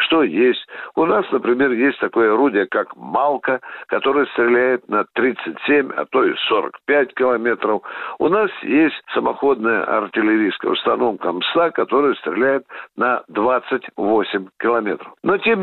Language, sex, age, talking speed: Russian, male, 60-79, 125 wpm